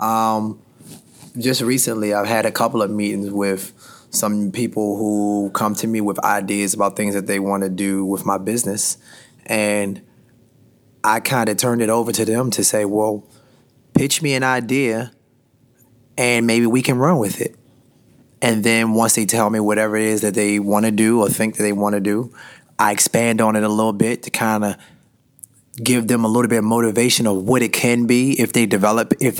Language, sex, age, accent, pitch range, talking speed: English, male, 20-39, American, 105-120 Hz, 200 wpm